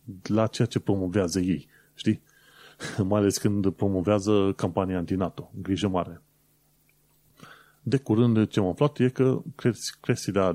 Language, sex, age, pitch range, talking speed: Romanian, male, 30-49, 95-130 Hz, 125 wpm